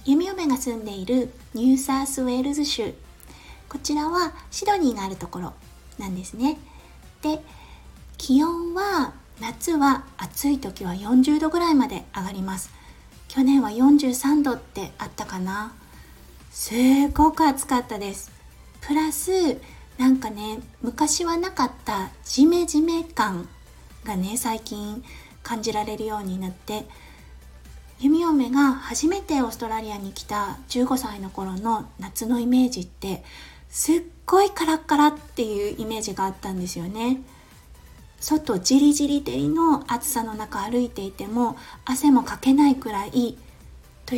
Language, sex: Japanese, female